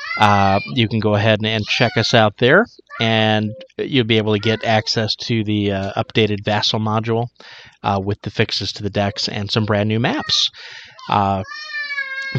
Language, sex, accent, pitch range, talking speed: English, male, American, 105-130 Hz, 180 wpm